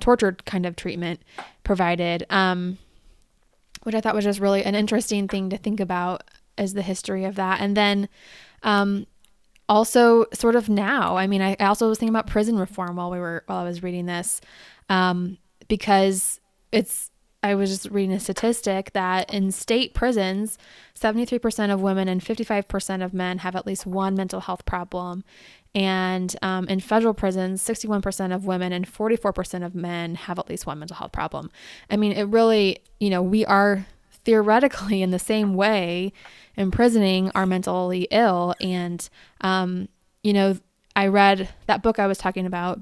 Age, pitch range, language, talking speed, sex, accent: 20-39, 185-210 Hz, English, 175 wpm, female, American